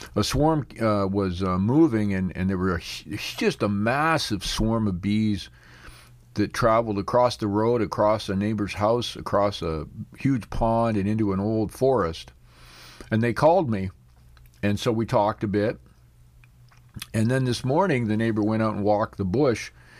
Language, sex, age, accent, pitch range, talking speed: English, male, 50-69, American, 95-120 Hz, 170 wpm